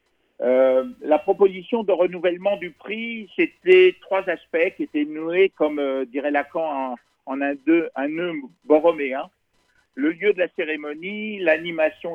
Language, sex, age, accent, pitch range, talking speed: French, male, 50-69, French, 135-195 Hz, 155 wpm